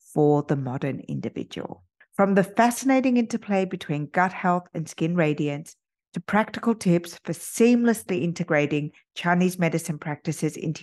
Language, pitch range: English, 150-195 Hz